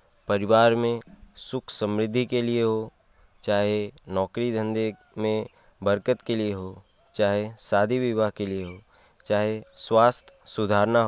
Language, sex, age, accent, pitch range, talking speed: Hindi, male, 20-39, native, 100-120 Hz, 130 wpm